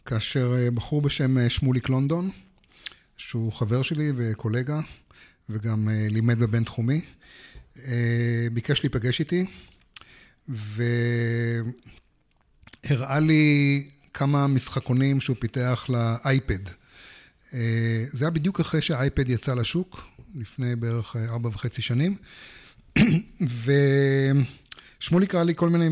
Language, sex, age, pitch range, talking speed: Hebrew, male, 30-49, 115-140 Hz, 90 wpm